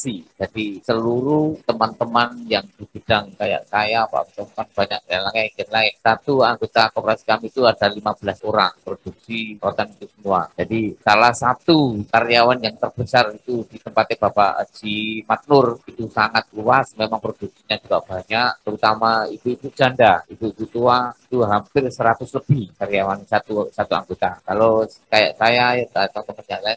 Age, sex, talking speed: 30-49, male, 140 wpm